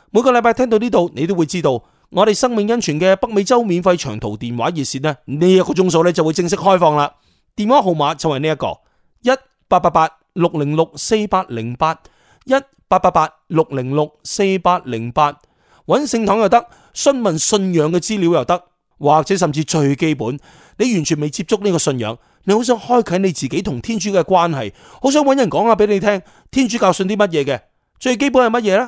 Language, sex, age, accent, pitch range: Chinese, male, 30-49, native, 150-215 Hz